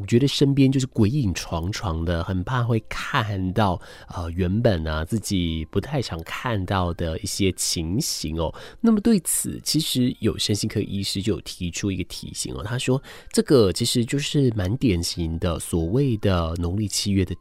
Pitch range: 90-120 Hz